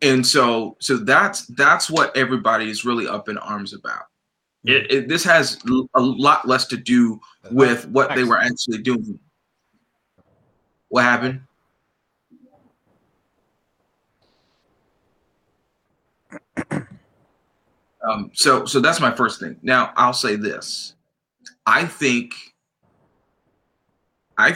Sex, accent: male, American